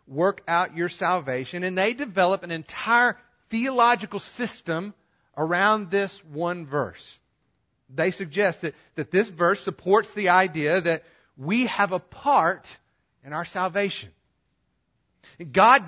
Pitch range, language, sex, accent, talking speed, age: 140-195 Hz, English, male, American, 125 wpm, 40-59